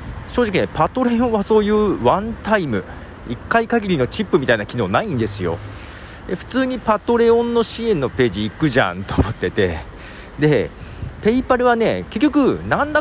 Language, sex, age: Japanese, male, 40-59